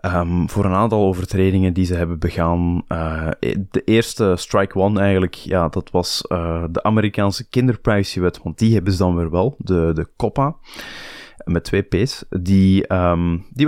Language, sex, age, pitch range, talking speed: Dutch, male, 20-39, 90-110 Hz, 165 wpm